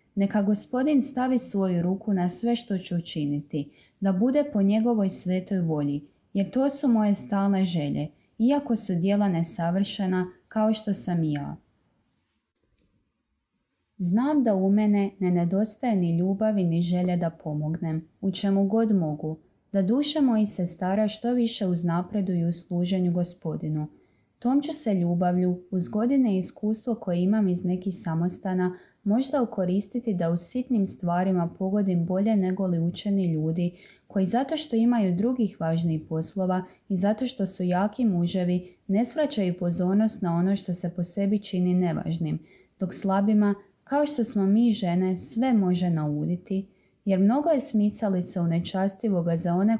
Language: Croatian